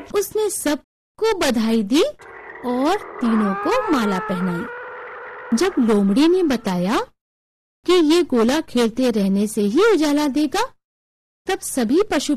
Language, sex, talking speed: Hindi, female, 120 wpm